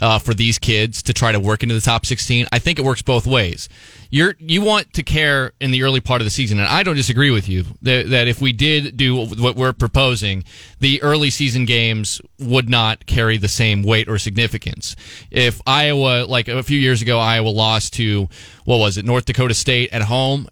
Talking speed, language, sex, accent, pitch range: 215 wpm, English, male, American, 115-145 Hz